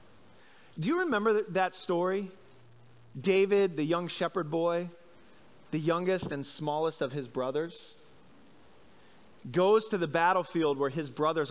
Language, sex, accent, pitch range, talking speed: English, male, American, 145-200 Hz, 125 wpm